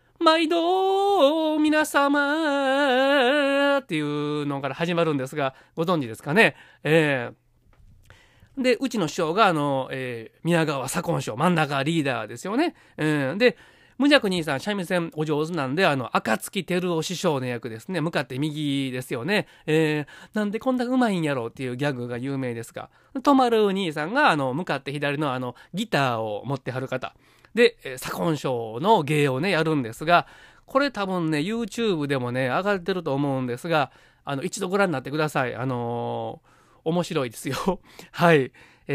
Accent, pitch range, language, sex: native, 140-210 Hz, Japanese, male